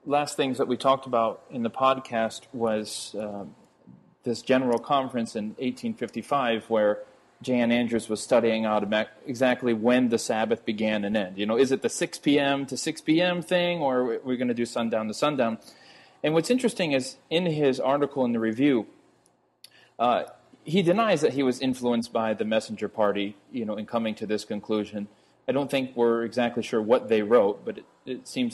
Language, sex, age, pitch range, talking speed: English, male, 30-49, 110-145 Hz, 190 wpm